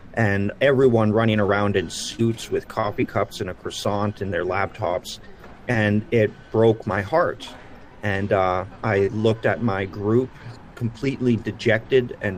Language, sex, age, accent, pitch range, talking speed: English, male, 40-59, American, 100-115 Hz, 145 wpm